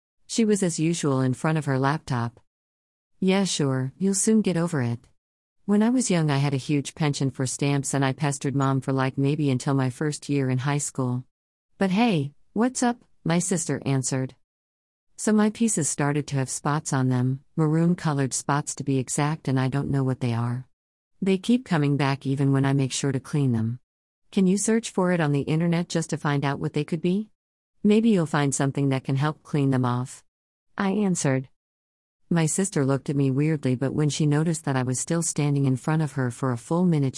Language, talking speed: English, 215 wpm